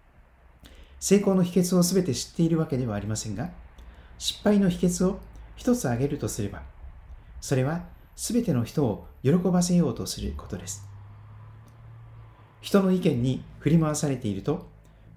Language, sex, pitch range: Japanese, male, 105-180 Hz